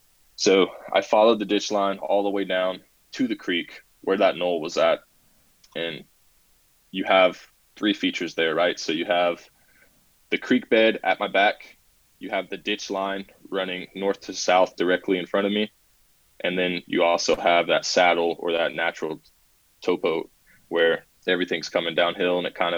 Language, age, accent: English, 20-39, American